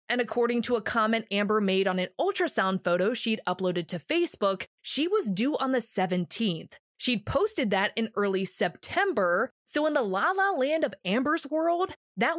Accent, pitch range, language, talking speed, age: American, 185-265 Hz, English, 175 wpm, 20-39